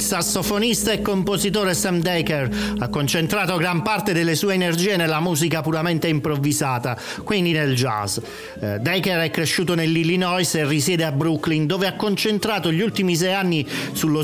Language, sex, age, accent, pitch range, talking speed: Italian, male, 40-59, native, 140-185 Hz, 150 wpm